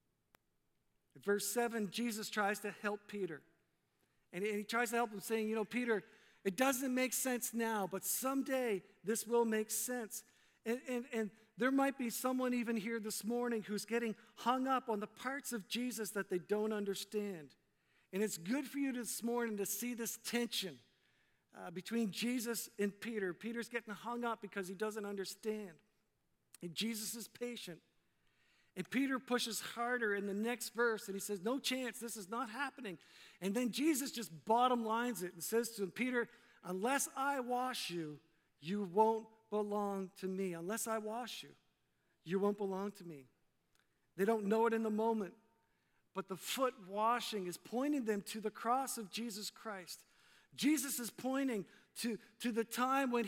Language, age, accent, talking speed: English, 50-69, American, 175 wpm